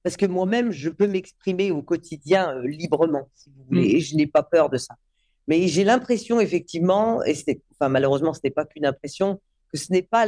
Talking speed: 215 wpm